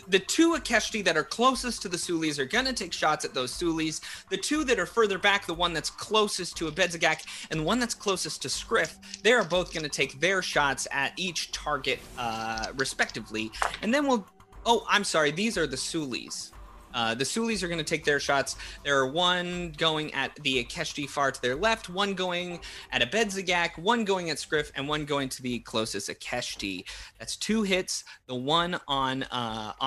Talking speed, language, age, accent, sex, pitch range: 200 wpm, English, 30-49, American, male, 125-180 Hz